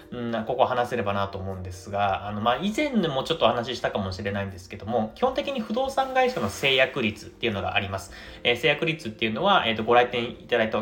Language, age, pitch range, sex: Japanese, 20-39, 100-150 Hz, male